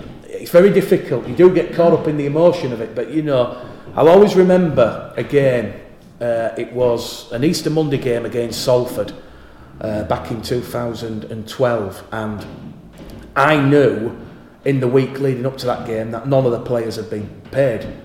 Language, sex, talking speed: English, male, 175 wpm